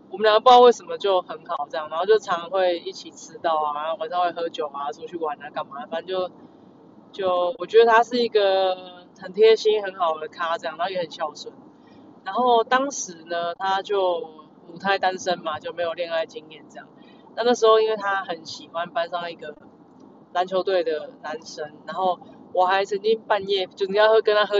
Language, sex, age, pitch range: Chinese, female, 20-39, 170-220 Hz